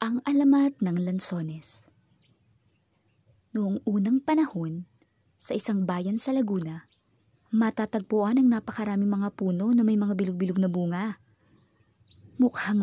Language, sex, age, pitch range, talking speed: English, female, 20-39, 180-230 Hz, 110 wpm